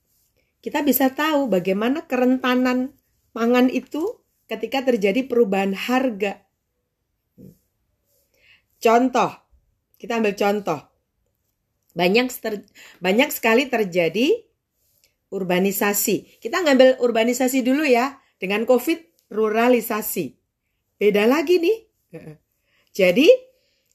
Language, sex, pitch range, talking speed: Indonesian, female, 180-260 Hz, 80 wpm